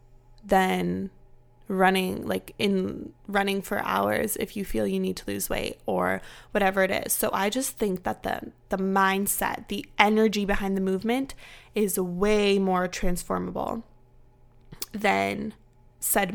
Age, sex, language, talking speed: 20-39, female, English, 140 wpm